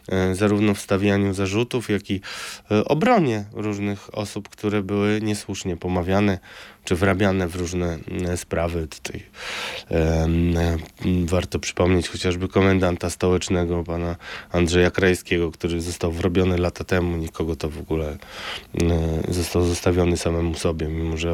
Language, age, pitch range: Polish, 20-39, 90-110 Hz